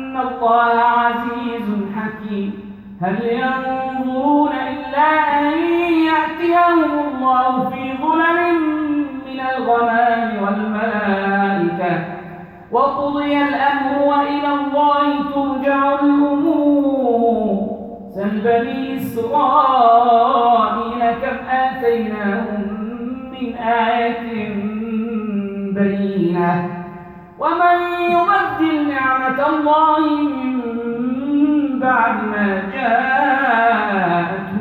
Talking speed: 60 wpm